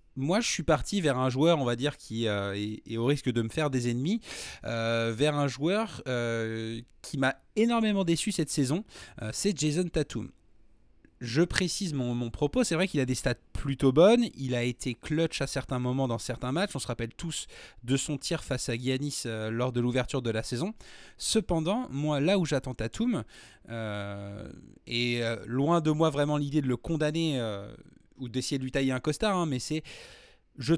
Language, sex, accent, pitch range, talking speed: French, male, French, 115-155 Hz, 205 wpm